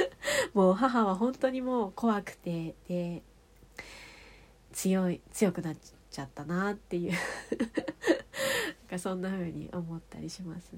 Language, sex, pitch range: Japanese, female, 165-220 Hz